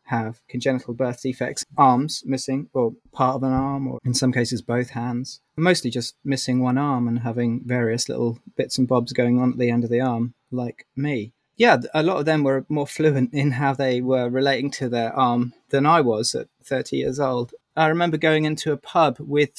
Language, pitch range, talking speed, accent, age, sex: English, 125-150 Hz, 210 wpm, British, 30-49, male